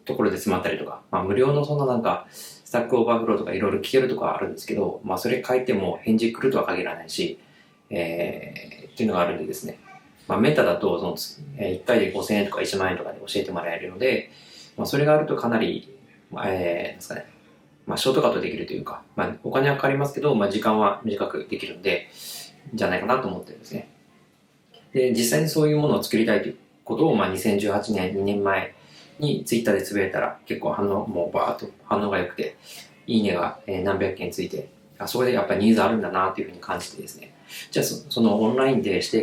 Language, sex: Japanese, male